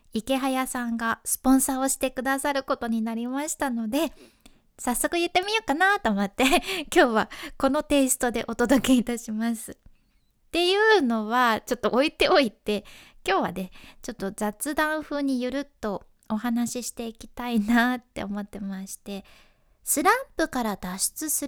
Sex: female